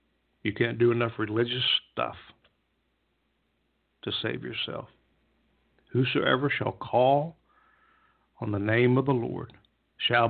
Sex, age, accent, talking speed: male, 60-79, American, 110 wpm